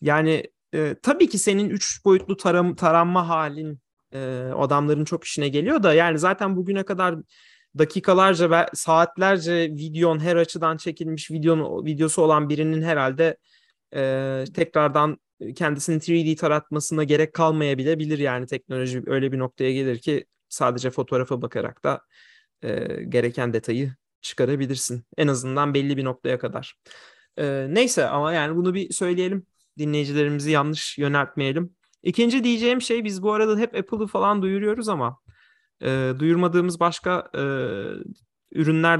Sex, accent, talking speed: male, native, 130 wpm